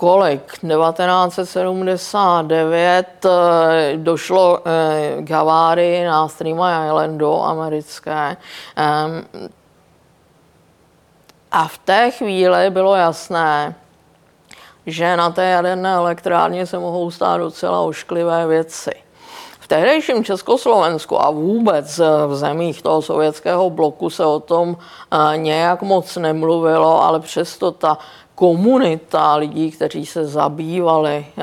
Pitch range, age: 155-175 Hz, 50-69